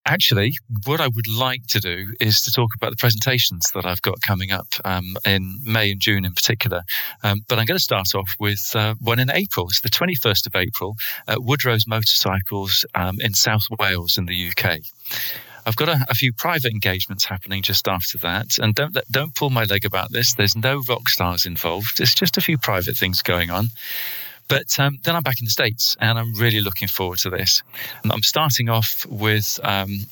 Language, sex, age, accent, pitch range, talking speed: English, male, 40-59, British, 95-120 Hz, 210 wpm